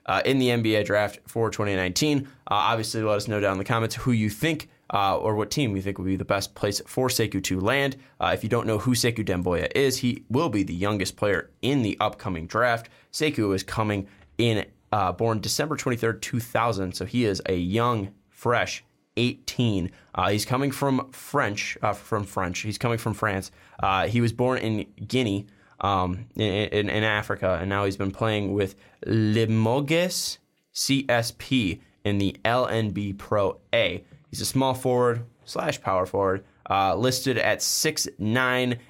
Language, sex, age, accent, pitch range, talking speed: English, male, 20-39, American, 100-125 Hz, 180 wpm